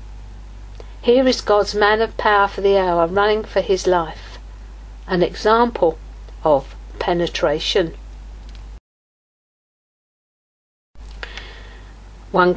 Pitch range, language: 175-220 Hz, English